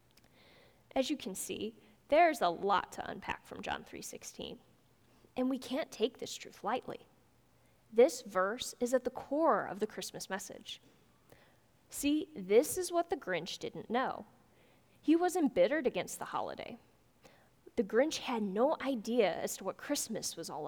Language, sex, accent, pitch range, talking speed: English, female, American, 205-280 Hz, 155 wpm